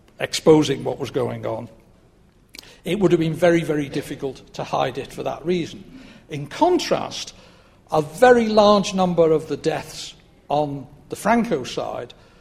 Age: 60-79